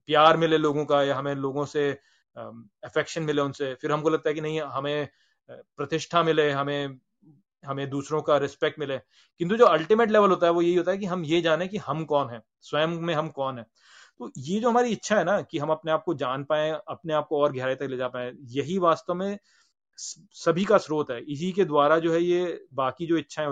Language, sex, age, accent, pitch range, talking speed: Hindi, male, 30-49, native, 145-185 Hz, 225 wpm